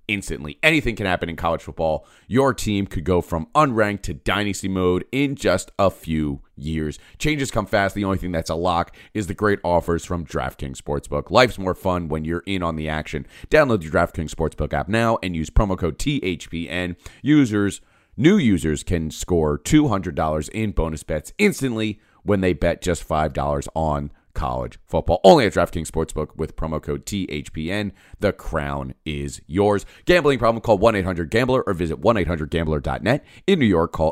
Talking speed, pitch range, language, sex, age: 170 wpm, 75-105 Hz, English, male, 30-49